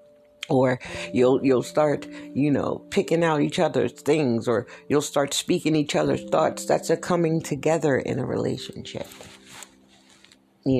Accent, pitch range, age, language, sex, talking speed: American, 130-180 Hz, 60-79, English, female, 145 wpm